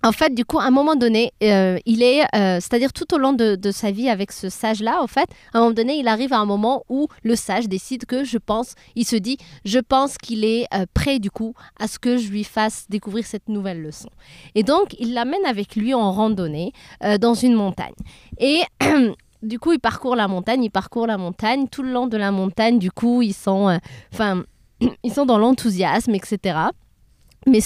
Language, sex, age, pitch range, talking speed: French, female, 20-39, 215-280 Hz, 220 wpm